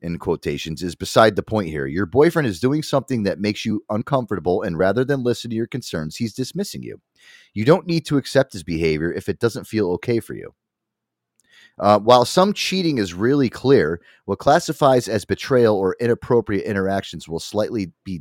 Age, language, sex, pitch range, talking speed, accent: 30-49, English, male, 100-135 Hz, 190 wpm, American